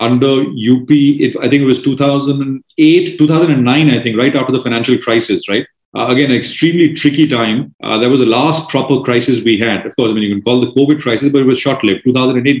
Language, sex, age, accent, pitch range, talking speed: English, male, 30-49, Indian, 120-145 Hz, 220 wpm